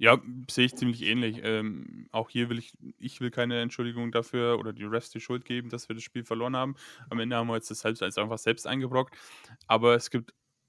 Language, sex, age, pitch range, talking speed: German, male, 10-29, 115-125 Hz, 230 wpm